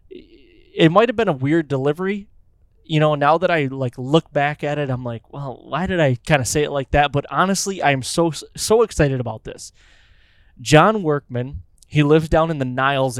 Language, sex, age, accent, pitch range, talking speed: English, male, 20-39, American, 115-160 Hz, 200 wpm